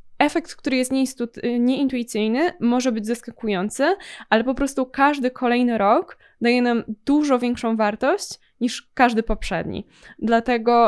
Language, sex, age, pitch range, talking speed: Polish, female, 20-39, 210-255 Hz, 120 wpm